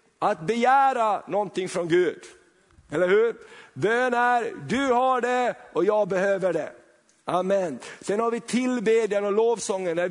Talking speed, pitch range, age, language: 140 wpm, 185-225 Hz, 50-69, Swedish